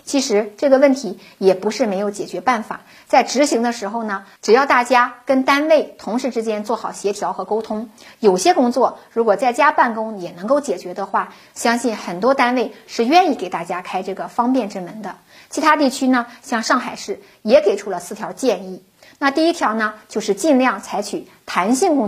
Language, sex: Chinese, female